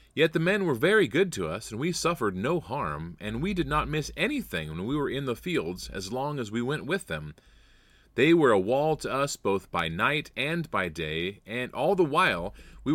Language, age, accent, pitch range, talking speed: English, 30-49, American, 110-155 Hz, 225 wpm